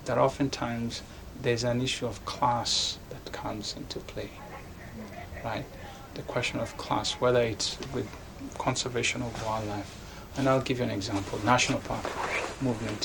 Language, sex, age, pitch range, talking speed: English, male, 30-49, 100-125 Hz, 145 wpm